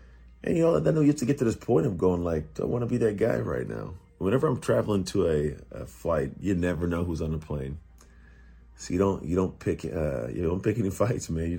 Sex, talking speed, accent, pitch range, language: male, 265 wpm, American, 75-95 Hz, English